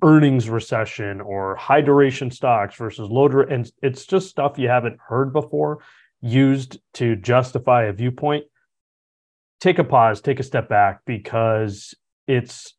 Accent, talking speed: American, 145 wpm